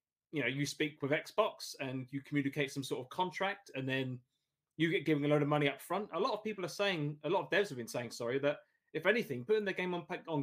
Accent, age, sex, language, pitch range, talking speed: British, 30-49, male, English, 140-170 Hz, 265 wpm